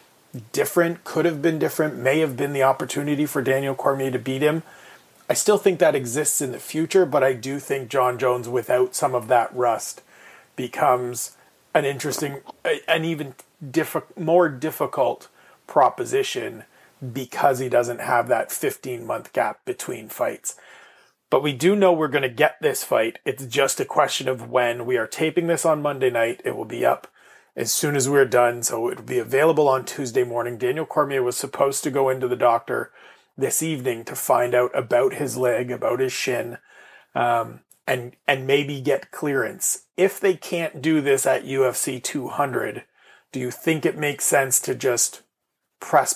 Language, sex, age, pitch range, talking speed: English, male, 30-49, 125-155 Hz, 175 wpm